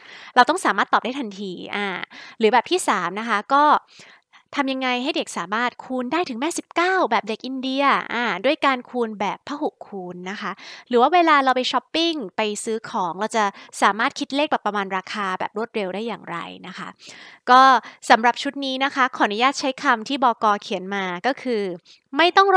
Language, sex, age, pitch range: Thai, female, 20-39, 200-275 Hz